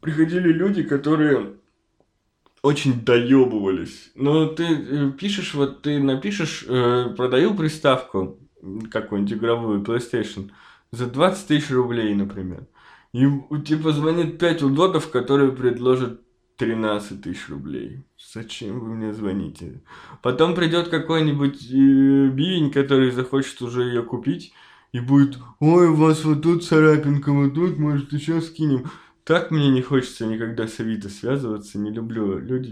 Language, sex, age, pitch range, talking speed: Russian, male, 20-39, 115-145 Hz, 125 wpm